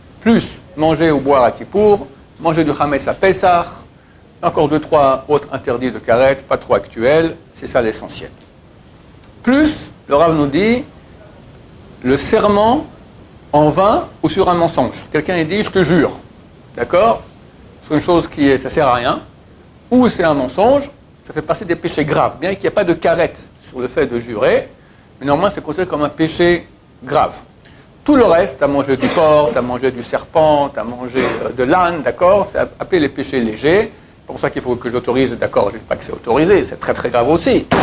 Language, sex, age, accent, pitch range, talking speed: French, male, 60-79, French, 135-175 Hz, 200 wpm